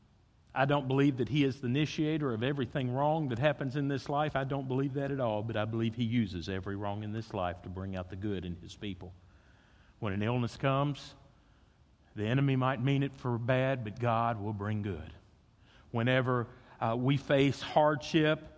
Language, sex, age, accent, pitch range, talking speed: English, male, 50-69, American, 110-150 Hz, 195 wpm